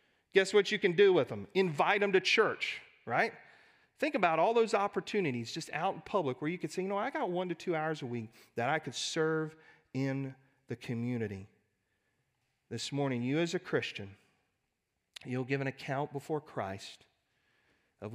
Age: 40-59